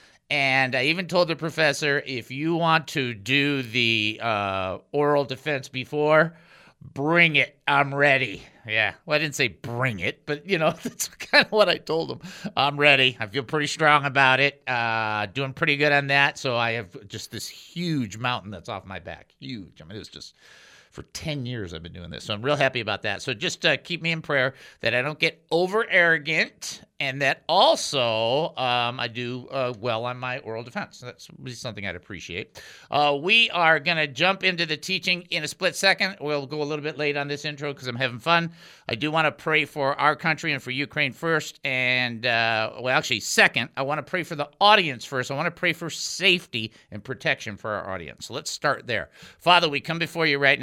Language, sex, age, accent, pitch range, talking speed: English, male, 50-69, American, 125-160 Hz, 215 wpm